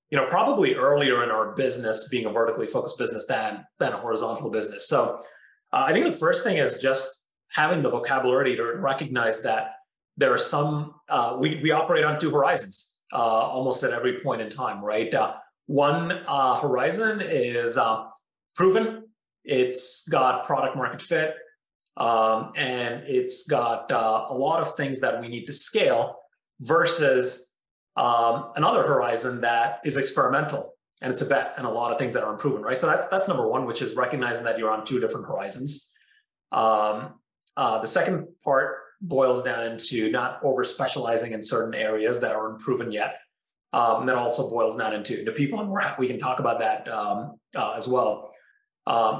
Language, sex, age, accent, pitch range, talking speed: English, male, 30-49, American, 115-170 Hz, 180 wpm